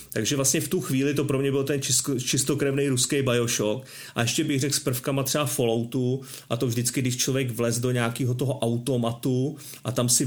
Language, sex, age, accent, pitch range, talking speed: Czech, male, 30-49, native, 125-140 Hz, 200 wpm